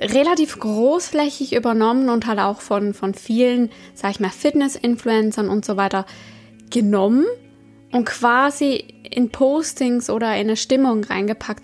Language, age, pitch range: German, 20-39, 210-255 Hz